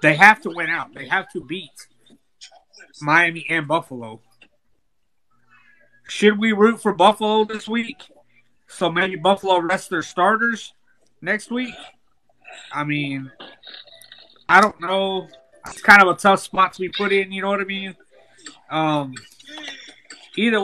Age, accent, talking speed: 30-49, American, 140 wpm